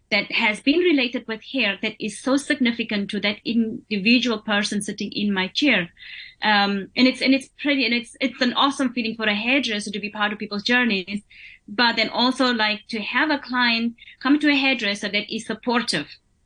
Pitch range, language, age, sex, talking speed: 205-245 Hz, English, 20-39, female, 195 wpm